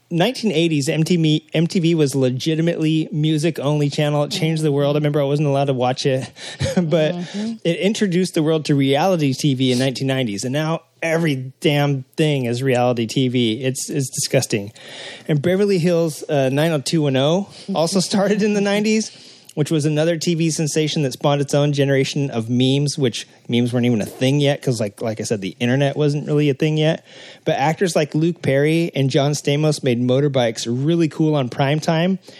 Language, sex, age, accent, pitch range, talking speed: English, male, 30-49, American, 135-160 Hz, 175 wpm